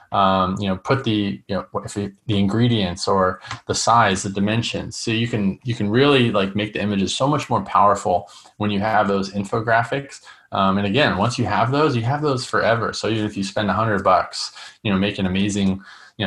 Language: English